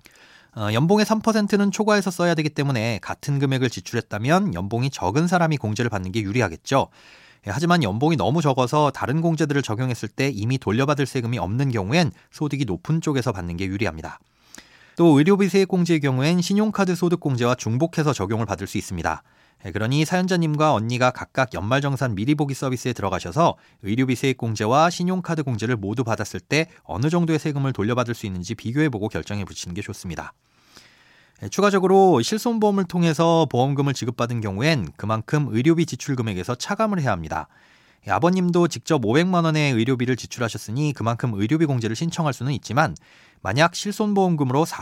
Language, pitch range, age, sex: Korean, 110-165 Hz, 30-49, male